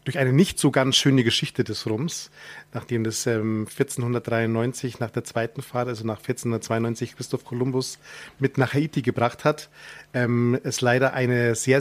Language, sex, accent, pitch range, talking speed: German, male, German, 120-140 Hz, 165 wpm